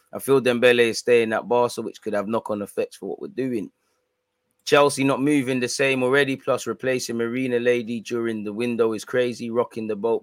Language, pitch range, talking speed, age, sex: English, 110-135 Hz, 200 wpm, 20-39, male